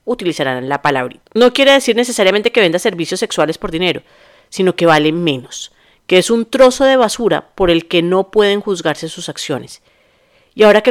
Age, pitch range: 40-59, 165-220 Hz